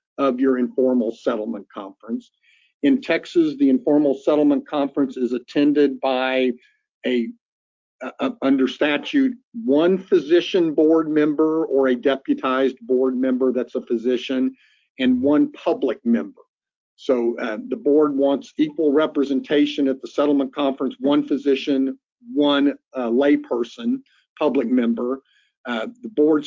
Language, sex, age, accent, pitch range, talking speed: English, male, 50-69, American, 135-160 Hz, 125 wpm